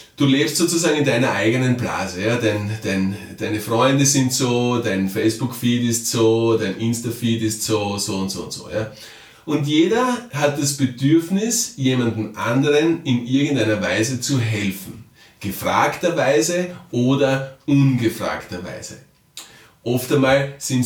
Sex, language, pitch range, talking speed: male, German, 110-135 Hz, 130 wpm